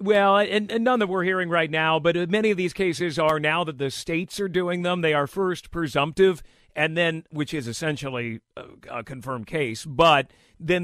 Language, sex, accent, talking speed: English, male, American, 200 wpm